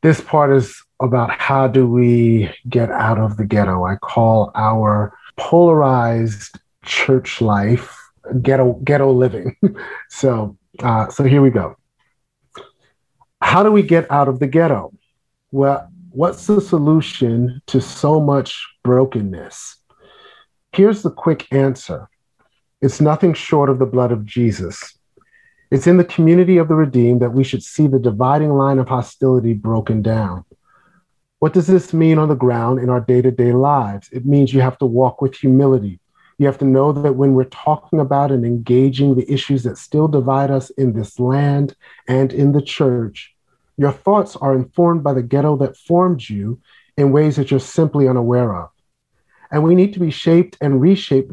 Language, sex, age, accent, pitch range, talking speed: English, male, 50-69, American, 125-150 Hz, 165 wpm